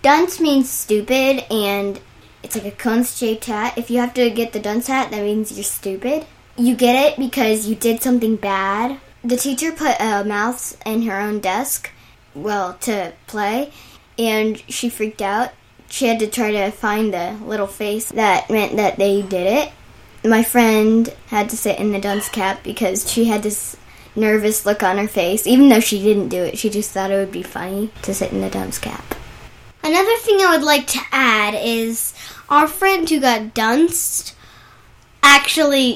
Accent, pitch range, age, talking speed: American, 205-250 Hz, 10-29, 185 wpm